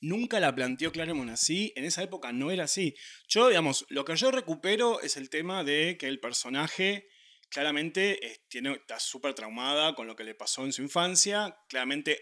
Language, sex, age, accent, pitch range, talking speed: Spanish, male, 30-49, Argentinian, 140-190 Hz, 190 wpm